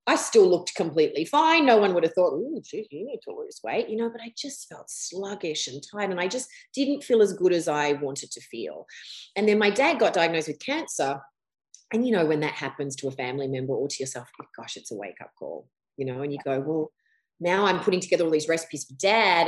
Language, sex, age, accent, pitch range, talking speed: English, female, 30-49, Australian, 150-215 Hz, 245 wpm